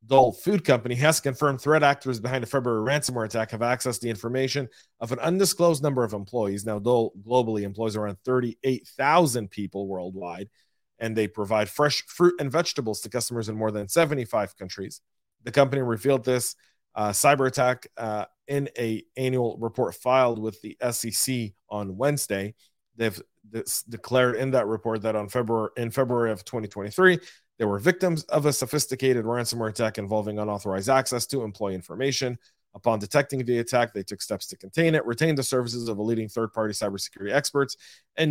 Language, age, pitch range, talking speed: English, 30-49, 110-130 Hz, 170 wpm